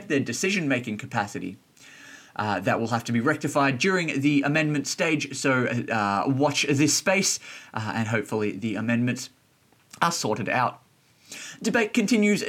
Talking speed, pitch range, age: 145 wpm, 125-175 Hz, 20-39